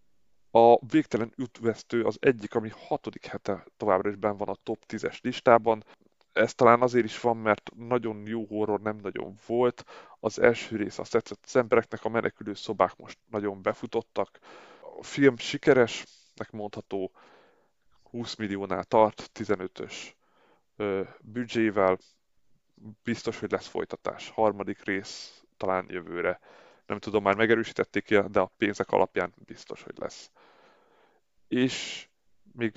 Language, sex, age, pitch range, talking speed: Hungarian, male, 30-49, 105-120 Hz, 130 wpm